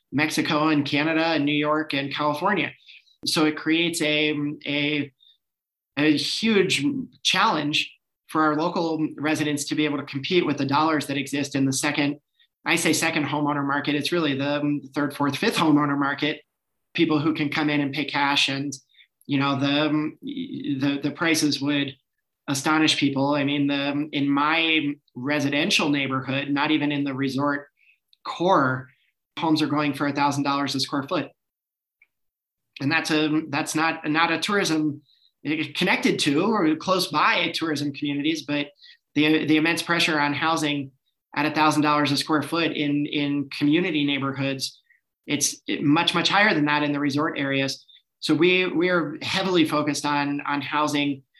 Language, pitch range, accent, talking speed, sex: English, 140-155 Hz, American, 160 wpm, male